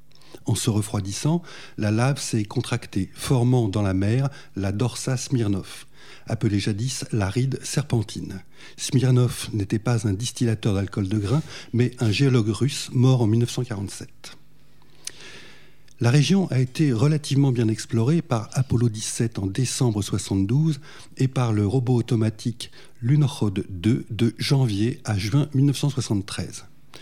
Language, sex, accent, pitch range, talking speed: French, male, French, 110-140 Hz, 130 wpm